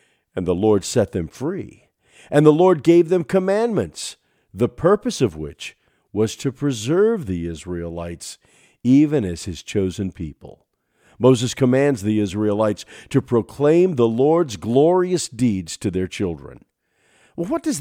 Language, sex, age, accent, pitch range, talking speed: English, male, 50-69, American, 100-170 Hz, 140 wpm